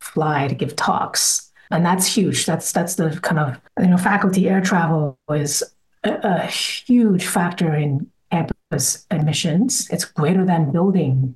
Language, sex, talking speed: English, female, 155 wpm